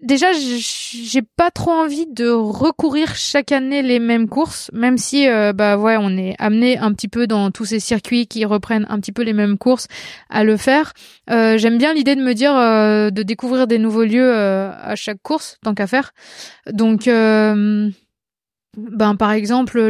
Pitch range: 215-255 Hz